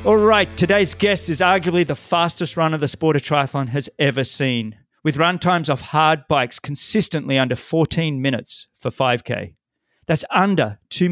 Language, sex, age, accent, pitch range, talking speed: English, male, 40-59, Australian, 125-160 Hz, 165 wpm